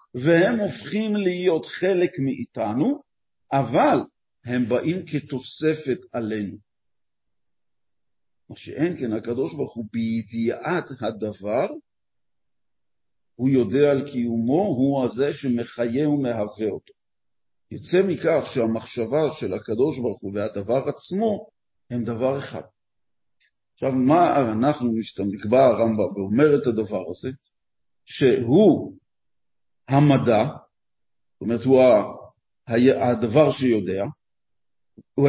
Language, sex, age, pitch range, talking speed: Hebrew, male, 50-69, 120-165 Hz, 90 wpm